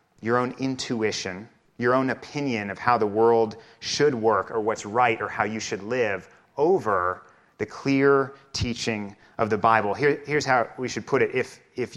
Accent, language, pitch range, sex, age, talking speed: American, English, 105-130 Hz, male, 30-49, 180 wpm